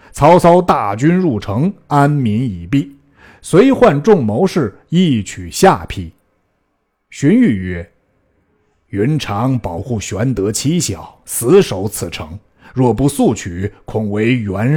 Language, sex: Chinese, male